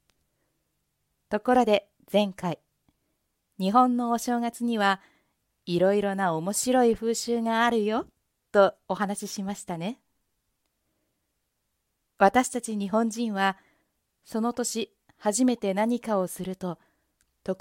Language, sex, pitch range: Japanese, female, 185-230 Hz